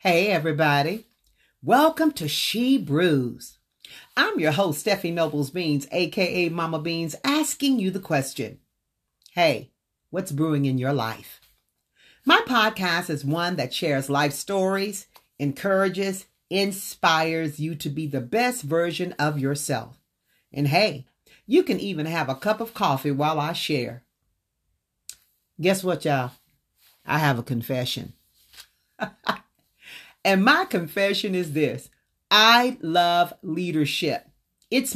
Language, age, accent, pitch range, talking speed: English, 50-69, American, 145-190 Hz, 125 wpm